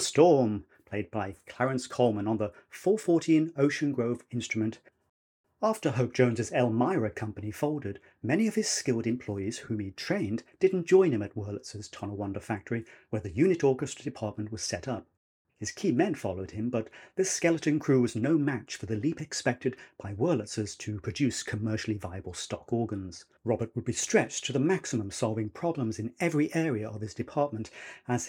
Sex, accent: male, British